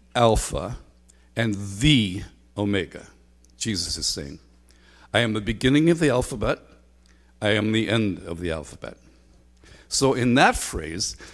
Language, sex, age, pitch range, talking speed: English, male, 60-79, 85-120 Hz, 130 wpm